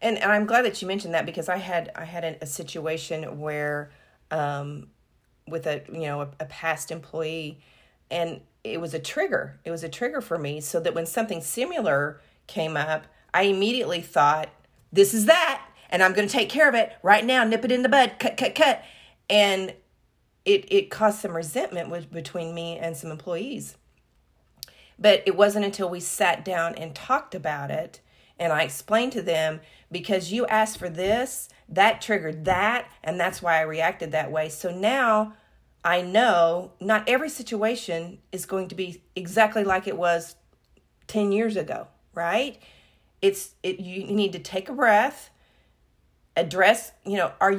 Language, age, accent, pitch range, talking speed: English, 40-59, American, 160-215 Hz, 175 wpm